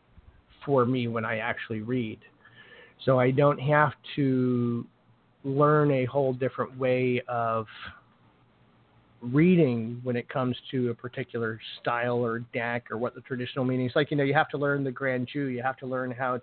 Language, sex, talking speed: English, male, 170 wpm